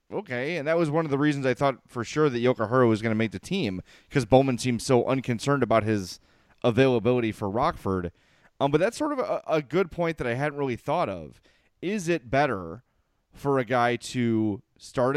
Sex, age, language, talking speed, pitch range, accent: male, 30-49, English, 215 wpm, 110-145 Hz, American